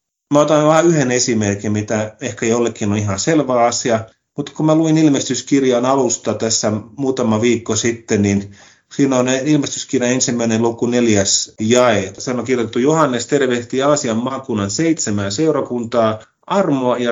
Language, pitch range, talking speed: Finnish, 110-140 Hz, 145 wpm